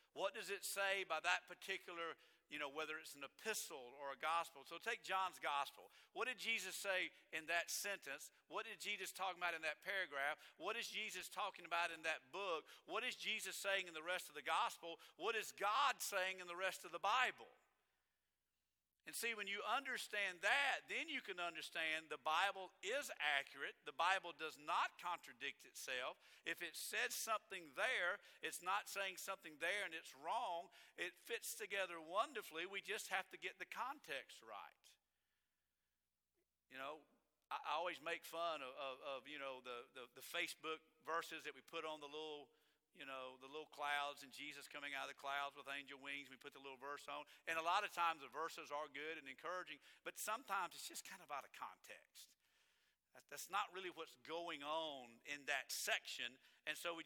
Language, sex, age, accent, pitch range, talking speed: English, male, 50-69, American, 140-185 Hz, 190 wpm